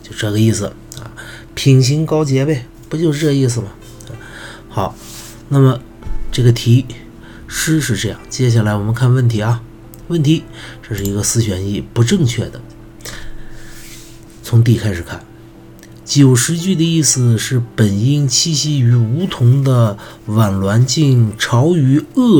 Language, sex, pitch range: Chinese, male, 110-130 Hz